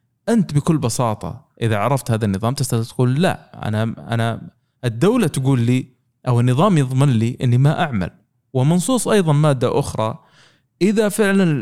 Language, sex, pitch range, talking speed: Arabic, male, 110-140 Hz, 145 wpm